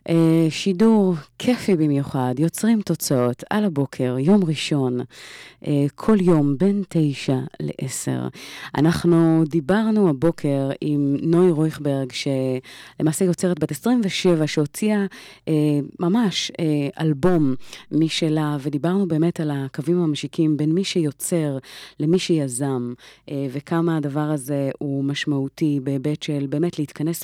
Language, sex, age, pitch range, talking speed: Hebrew, female, 30-49, 140-170 Hz, 105 wpm